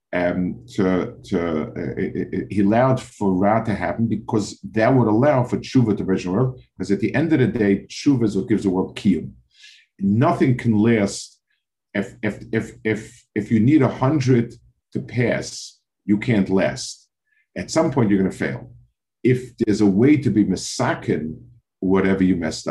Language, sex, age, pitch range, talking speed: English, male, 50-69, 100-125 Hz, 180 wpm